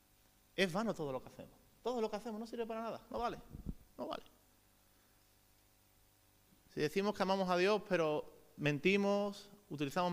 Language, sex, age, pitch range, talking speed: Spanish, male, 30-49, 150-205 Hz, 160 wpm